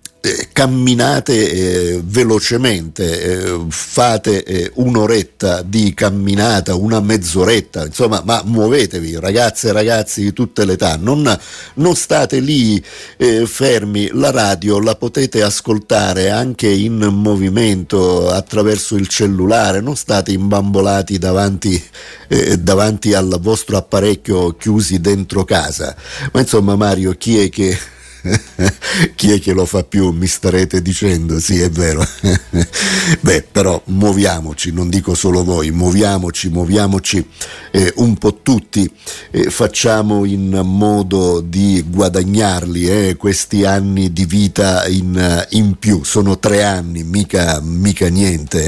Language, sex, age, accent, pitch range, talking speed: Italian, male, 50-69, native, 90-105 Hz, 125 wpm